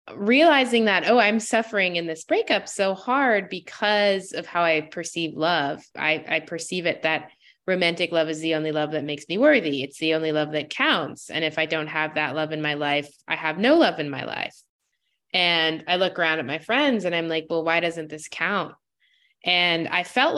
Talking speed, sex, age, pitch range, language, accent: 210 wpm, female, 20-39, 160-205 Hz, English, American